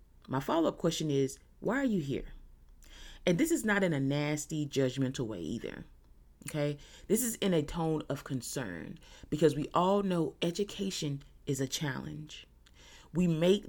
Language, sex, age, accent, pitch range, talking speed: English, female, 30-49, American, 125-170 Hz, 160 wpm